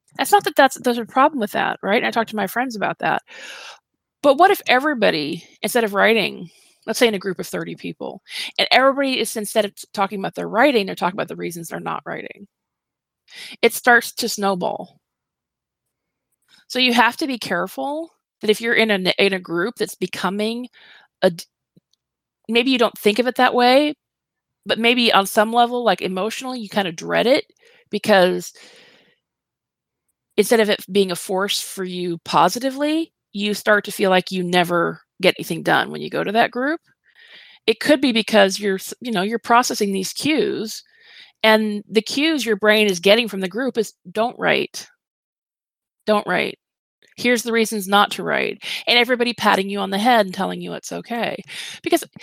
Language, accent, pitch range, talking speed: English, American, 200-255 Hz, 185 wpm